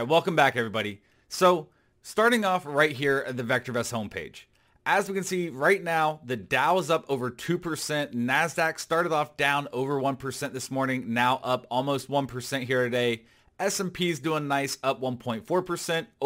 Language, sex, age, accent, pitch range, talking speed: English, male, 30-49, American, 125-165 Hz, 160 wpm